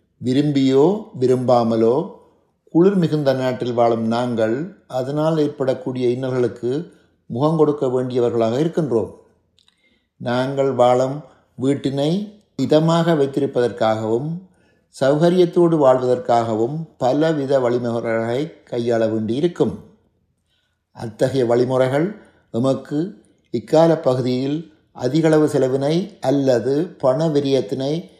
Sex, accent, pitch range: male, native, 120-155 Hz